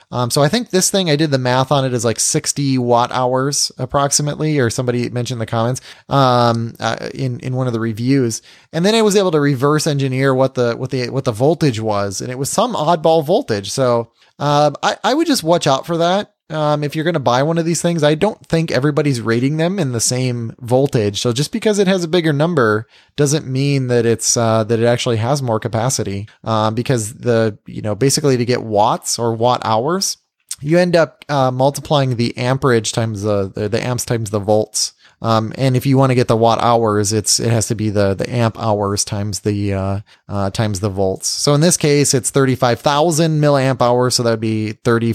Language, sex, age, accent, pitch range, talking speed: English, male, 20-39, American, 110-145 Hz, 225 wpm